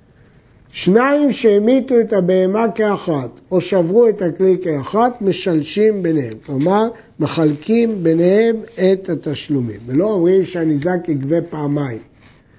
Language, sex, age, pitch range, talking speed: Hebrew, male, 60-79, 160-220 Hz, 105 wpm